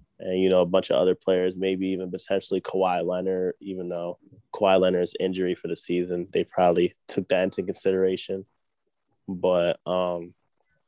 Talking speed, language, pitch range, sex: 160 wpm, English, 95-105 Hz, male